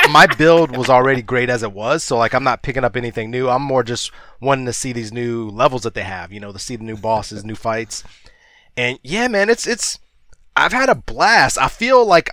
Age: 20-39